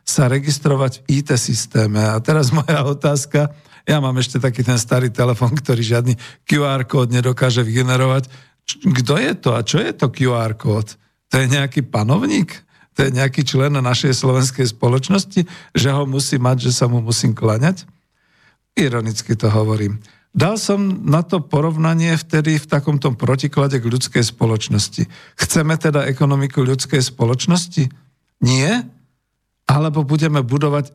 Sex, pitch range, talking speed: male, 120-150 Hz, 145 wpm